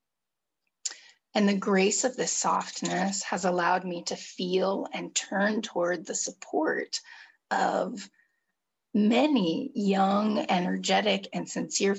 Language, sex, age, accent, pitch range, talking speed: English, female, 30-49, American, 190-245 Hz, 110 wpm